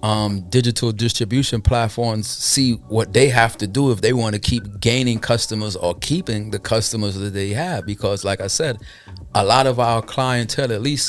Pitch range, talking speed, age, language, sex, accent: 105-135 Hz, 190 wpm, 30-49, English, male, American